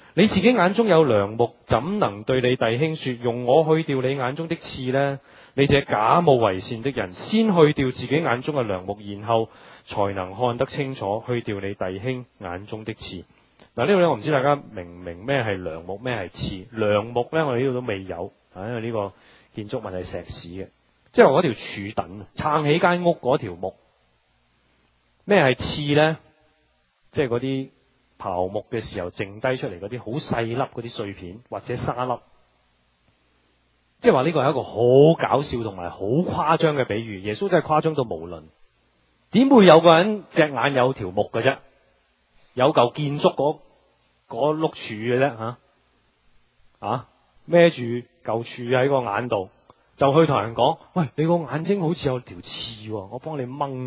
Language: Chinese